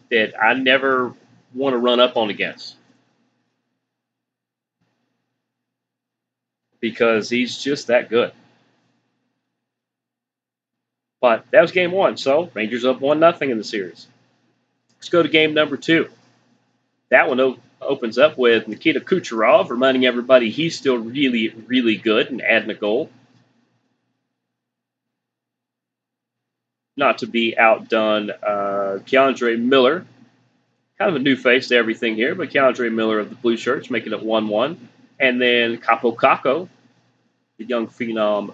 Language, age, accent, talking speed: English, 30-49, American, 130 wpm